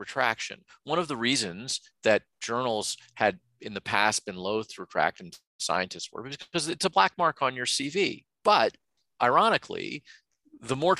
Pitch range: 100-135 Hz